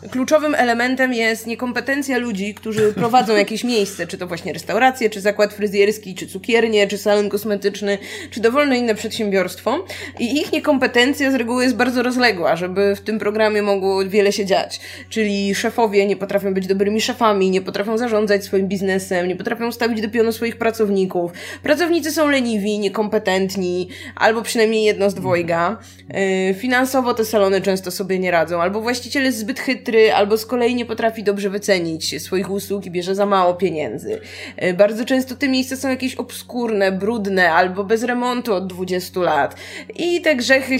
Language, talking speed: Polish, 165 wpm